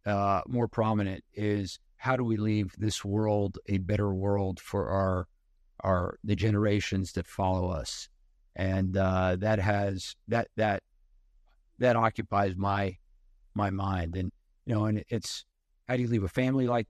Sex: male